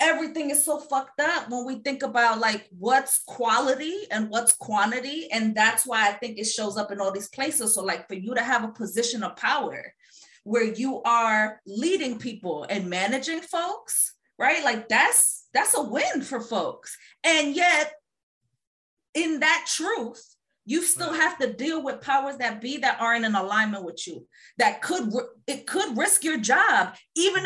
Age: 30-49